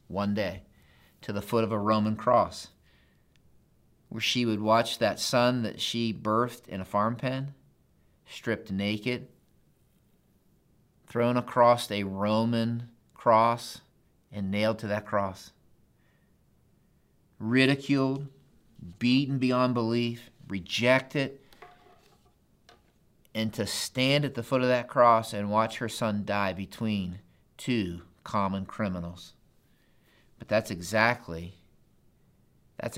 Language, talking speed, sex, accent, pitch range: English, 110 wpm, male, American, 100-120 Hz